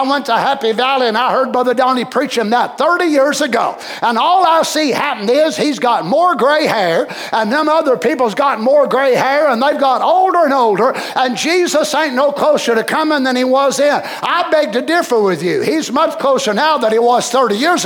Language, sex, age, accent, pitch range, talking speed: English, male, 50-69, American, 240-315 Hz, 220 wpm